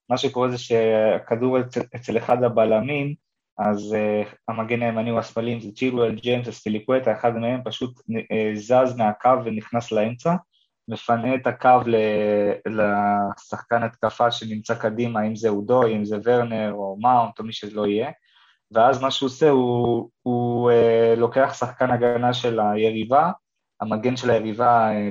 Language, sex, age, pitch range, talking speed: Hebrew, male, 20-39, 110-125 Hz, 150 wpm